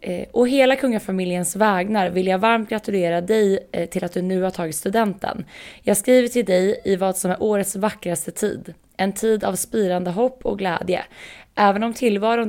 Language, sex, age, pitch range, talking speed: Swedish, female, 20-39, 175-215 Hz, 180 wpm